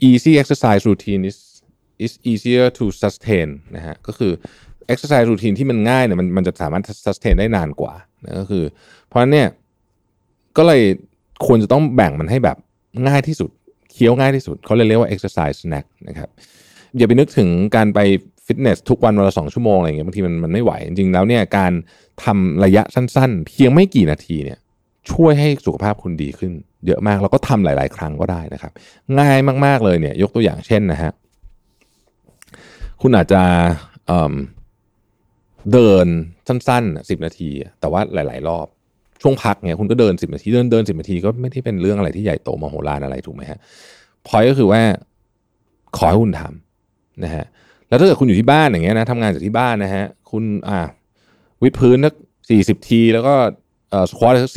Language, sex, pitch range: Thai, male, 90-120 Hz